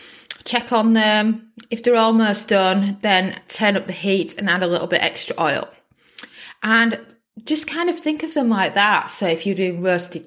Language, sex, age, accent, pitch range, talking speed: English, female, 20-39, British, 190-230 Hz, 195 wpm